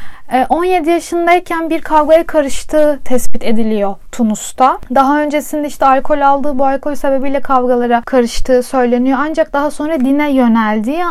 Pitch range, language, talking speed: 240-290 Hz, Turkish, 130 wpm